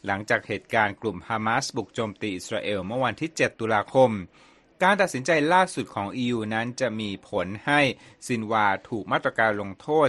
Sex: male